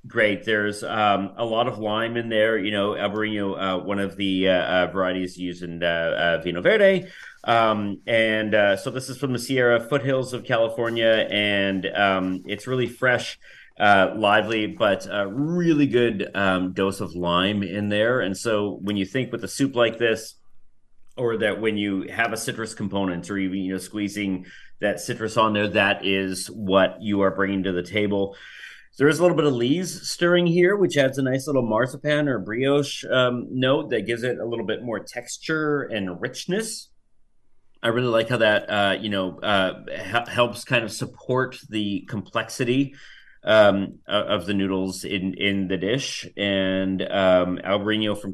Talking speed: 180 wpm